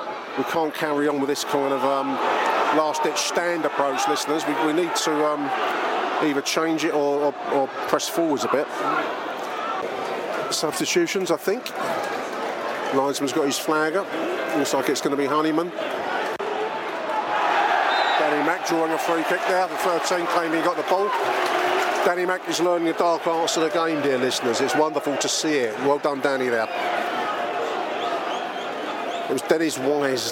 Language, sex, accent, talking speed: English, male, British, 160 wpm